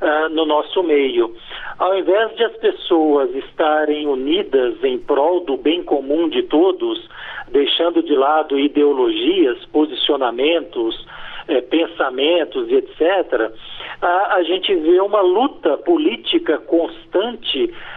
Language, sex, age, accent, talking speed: Portuguese, male, 50-69, Brazilian, 110 wpm